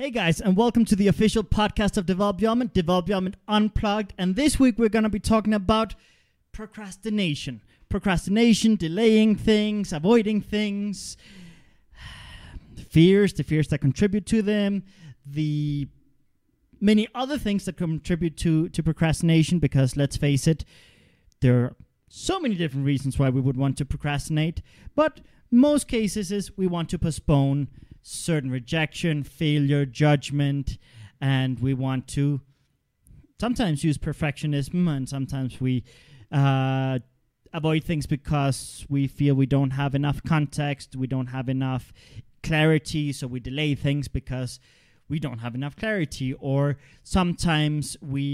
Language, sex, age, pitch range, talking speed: English, male, 30-49, 135-190 Hz, 140 wpm